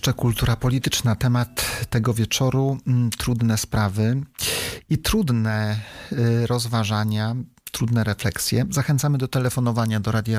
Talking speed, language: 105 wpm, Polish